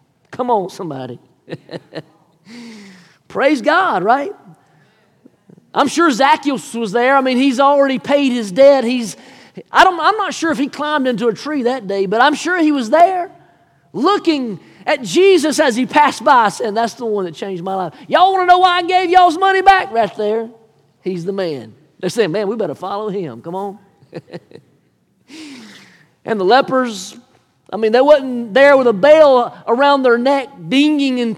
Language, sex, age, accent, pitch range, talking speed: English, male, 40-59, American, 205-285 Hz, 180 wpm